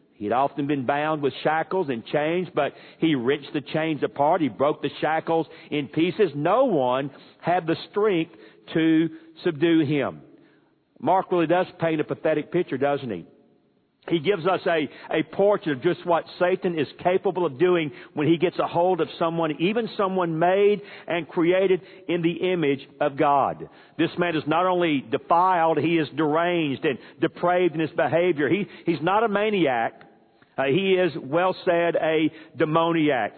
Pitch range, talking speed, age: 155-190 Hz, 170 wpm, 50-69